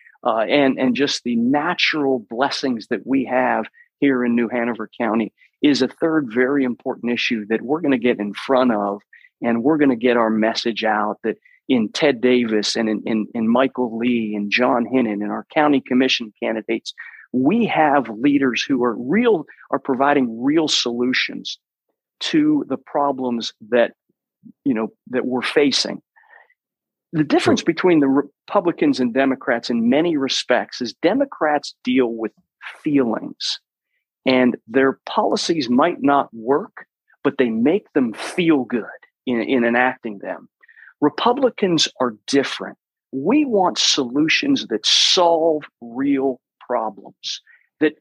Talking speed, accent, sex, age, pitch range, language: 145 wpm, American, male, 40-59, 120-155 Hz, English